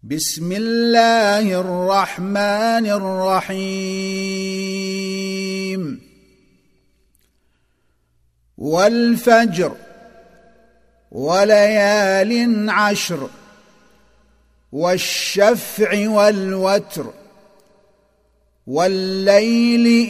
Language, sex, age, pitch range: Arabic, male, 50-69, 190-215 Hz